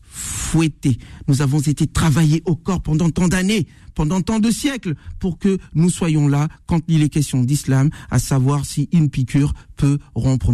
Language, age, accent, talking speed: French, 50-69, French, 175 wpm